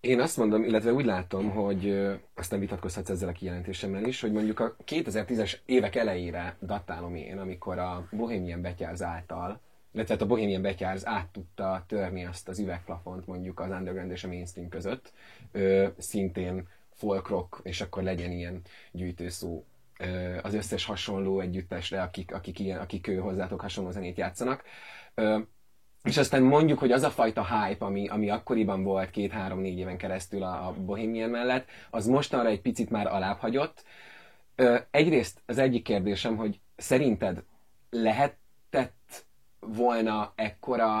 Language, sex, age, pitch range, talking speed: Hungarian, male, 30-49, 95-115 Hz, 145 wpm